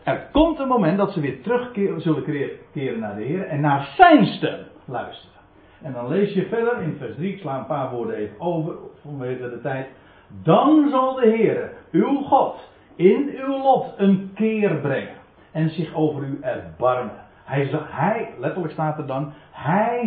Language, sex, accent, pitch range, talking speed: Dutch, male, Dutch, 145-215 Hz, 180 wpm